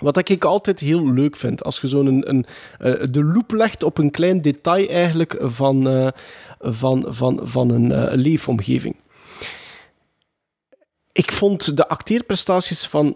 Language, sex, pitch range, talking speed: Dutch, male, 125-180 Hz, 130 wpm